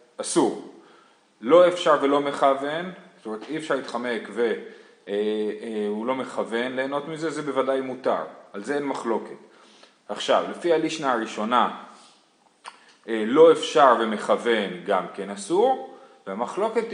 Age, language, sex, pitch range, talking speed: 30-49, Hebrew, male, 125-175 Hz, 115 wpm